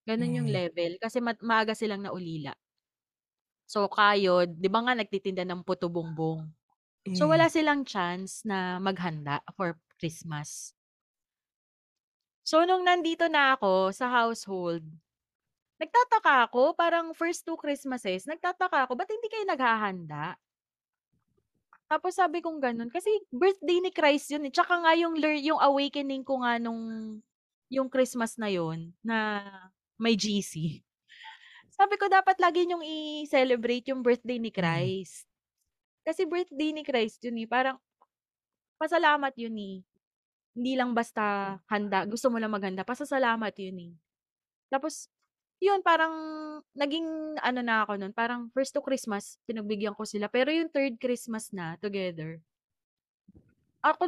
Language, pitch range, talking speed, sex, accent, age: Filipino, 195-305 Hz, 135 wpm, female, native, 20-39